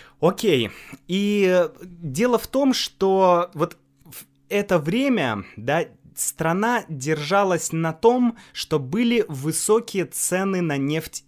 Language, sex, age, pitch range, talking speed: Russian, male, 20-39, 125-185 Hz, 115 wpm